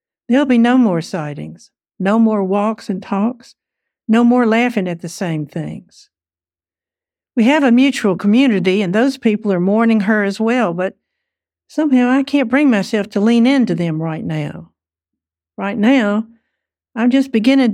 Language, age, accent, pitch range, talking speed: English, 60-79, American, 180-245 Hz, 160 wpm